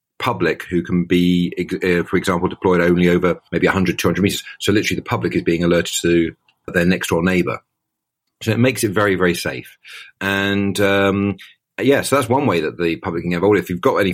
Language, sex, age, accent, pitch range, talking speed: English, male, 40-59, British, 90-105 Hz, 210 wpm